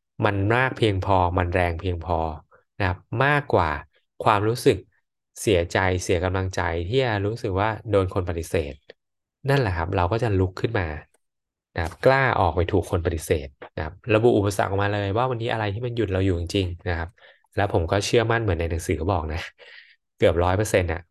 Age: 20-39